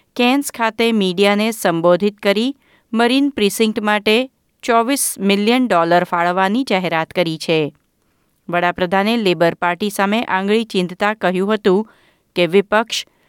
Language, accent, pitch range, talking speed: Gujarati, native, 180-230 Hz, 100 wpm